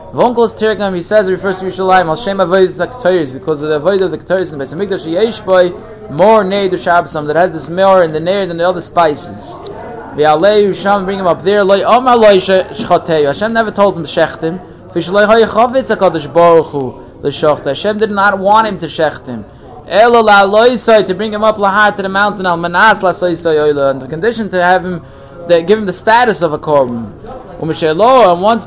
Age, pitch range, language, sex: 20-39, 160-205 Hz, English, male